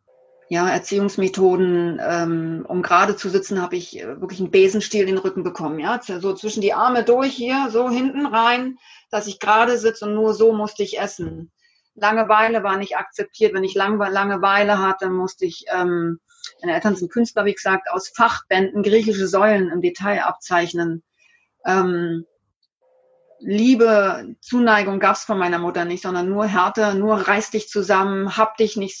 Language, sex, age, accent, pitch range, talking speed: German, female, 30-49, German, 190-230 Hz, 170 wpm